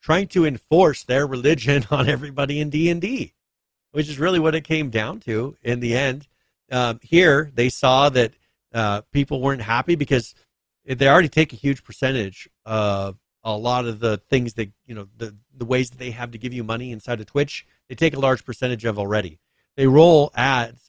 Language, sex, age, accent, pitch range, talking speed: English, male, 40-59, American, 115-140 Hz, 195 wpm